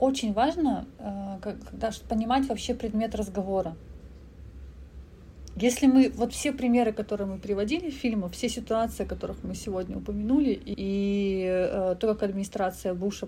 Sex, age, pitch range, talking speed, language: female, 30-49, 185-225 Hz, 130 wpm, Russian